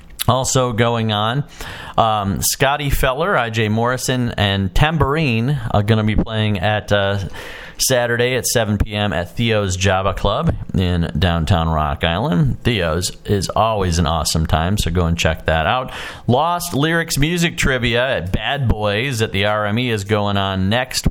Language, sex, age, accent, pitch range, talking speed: English, male, 40-59, American, 95-125 Hz, 155 wpm